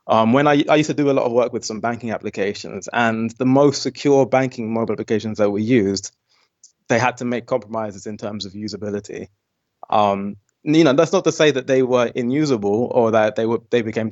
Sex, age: male, 20-39